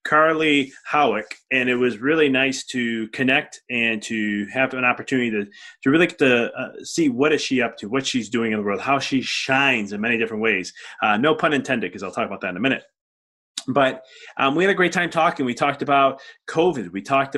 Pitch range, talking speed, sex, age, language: 120-150 Hz, 225 wpm, male, 30-49, English